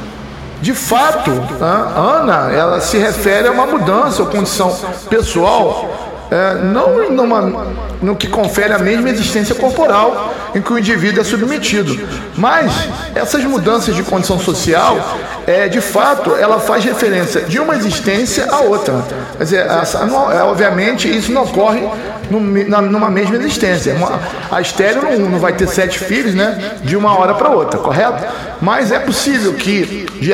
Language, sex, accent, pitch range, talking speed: Portuguese, male, Brazilian, 185-225 Hz, 145 wpm